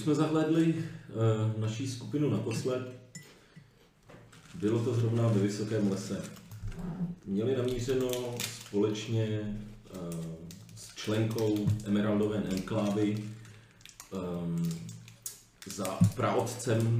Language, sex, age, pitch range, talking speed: Czech, male, 40-59, 105-120 Hz, 65 wpm